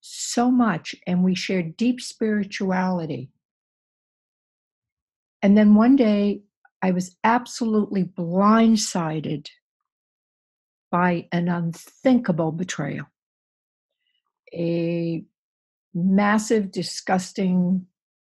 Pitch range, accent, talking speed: 170-210 Hz, American, 70 wpm